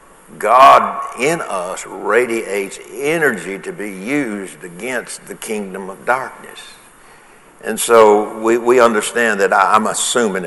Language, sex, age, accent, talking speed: English, male, 60-79, American, 120 wpm